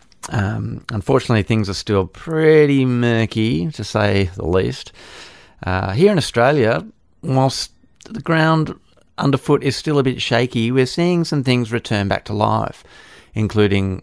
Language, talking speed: English, 140 wpm